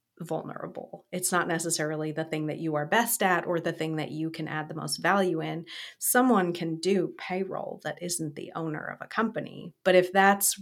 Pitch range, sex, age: 165-195 Hz, female, 30-49